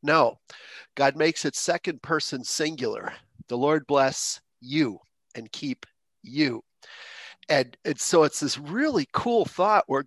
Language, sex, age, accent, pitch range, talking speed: English, male, 40-59, American, 135-185 Hz, 135 wpm